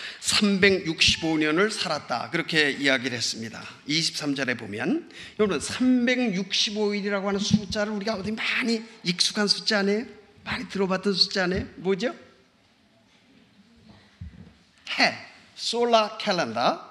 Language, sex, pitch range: Korean, male, 170-220 Hz